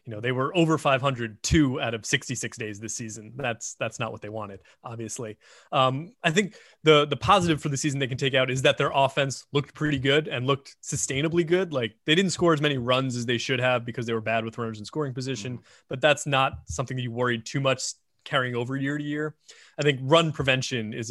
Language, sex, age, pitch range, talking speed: English, male, 20-39, 115-145 Hz, 235 wpm